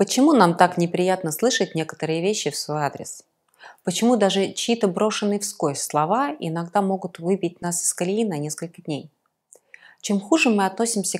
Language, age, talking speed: Russian, 20-39, 155 wpm